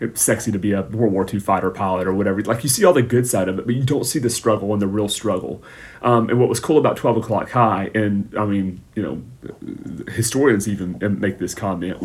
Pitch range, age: 95-115 Hz, 30-49